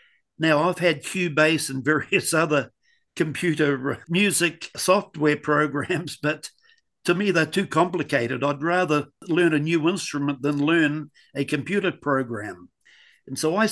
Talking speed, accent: 135 wpm, Australian